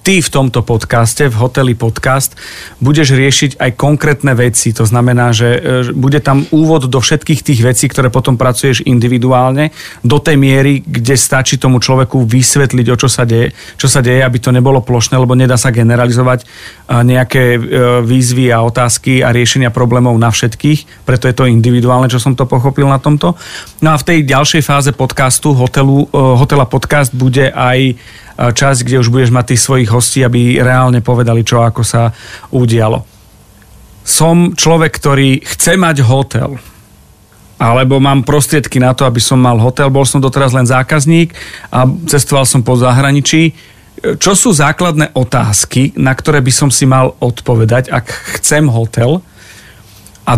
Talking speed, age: 160 wpm, 40-59